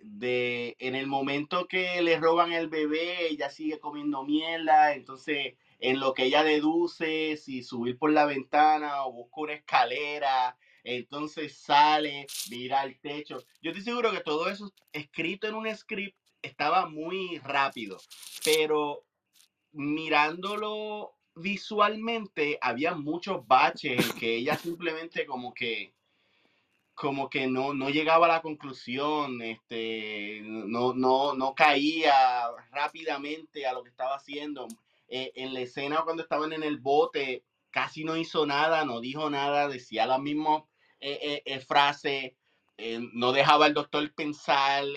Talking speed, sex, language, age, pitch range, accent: 140 wpm, male, Spanish, 30-49, 130-160 Hz, Venezuelan